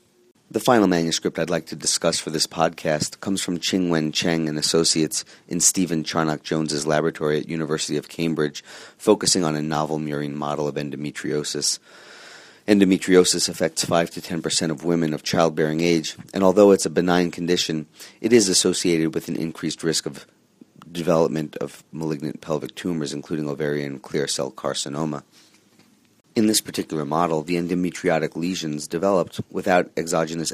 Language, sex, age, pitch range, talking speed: English, male, 30-49, 75-90 Hz, 155 wpm